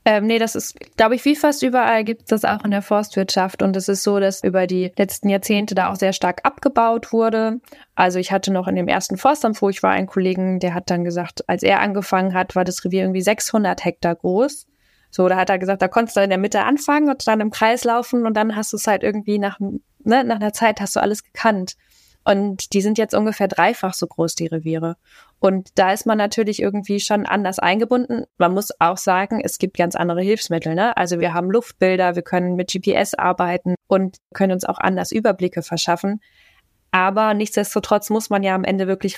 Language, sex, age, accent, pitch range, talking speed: German, female, 20-39, German, 185-220 Hz, 220 wpm